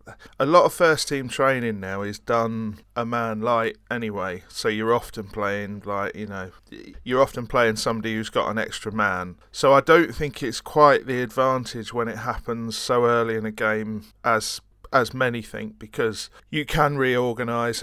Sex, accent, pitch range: male, British, 110-125 Hz